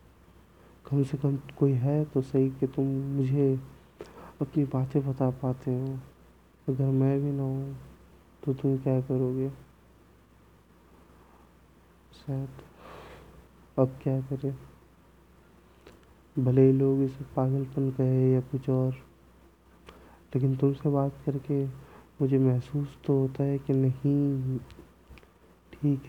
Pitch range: 85-135 Hz